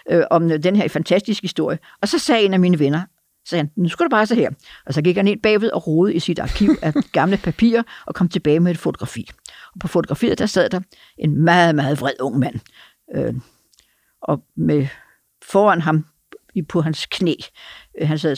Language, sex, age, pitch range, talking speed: Danish, female, 60-79, 155-205 Hz, 200 wpm